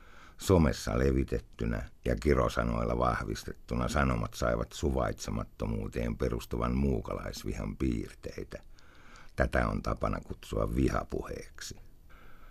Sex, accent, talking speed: male, native, 75 wpm